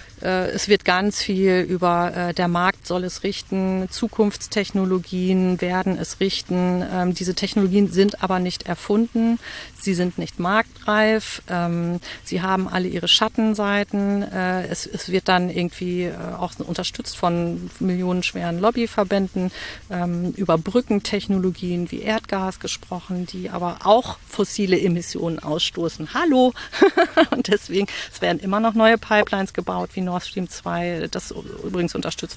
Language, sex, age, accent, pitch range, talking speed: German, female, 40-59, German, 180-215 Hz, 135 wpm